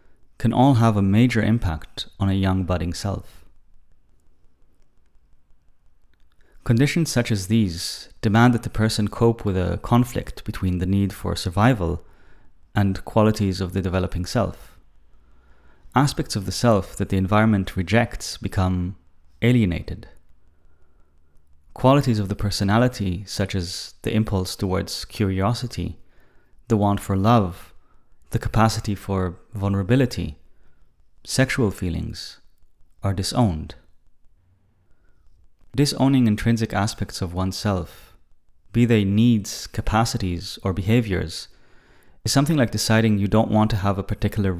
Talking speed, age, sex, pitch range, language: 120 wpm, 30-49, male, 90-110 Hz, English